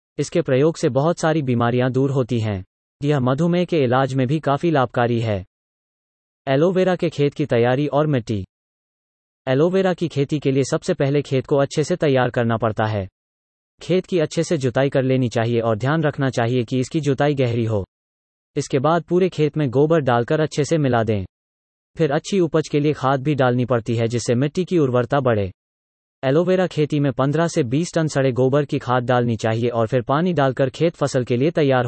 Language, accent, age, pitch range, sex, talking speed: English, Indian, 30-49, 115-155 Hz, male, 190 wpm